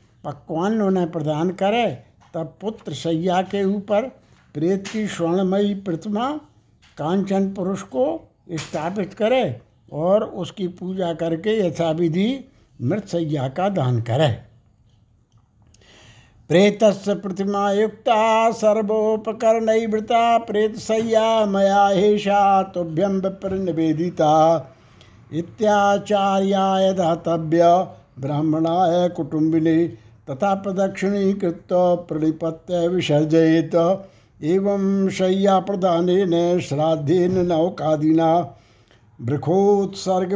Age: 60-79